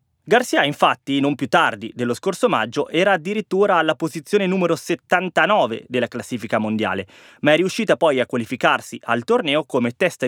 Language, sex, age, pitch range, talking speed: Italian, male, 20-39, 135-195 Hz, 160 wpm